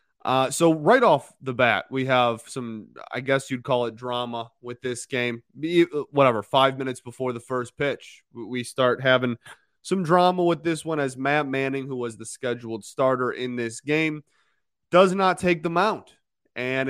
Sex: male